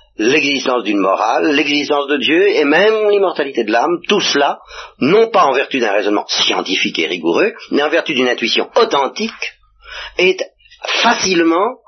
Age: 40-59